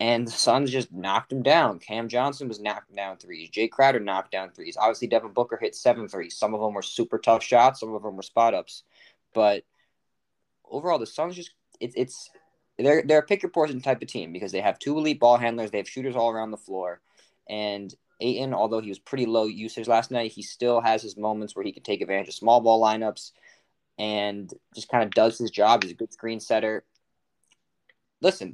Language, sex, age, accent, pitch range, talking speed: English, male, 20-39, American, 110-135 Hz, 215 wpm